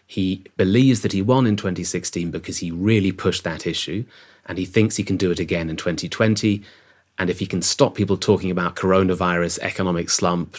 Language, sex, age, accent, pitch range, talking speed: English, male, 30-49, British, 90-105 Hz, 195 wpm